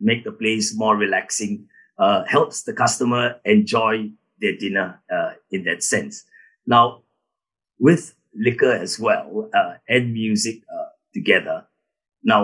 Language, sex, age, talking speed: English, male, 50-69, 130 wpm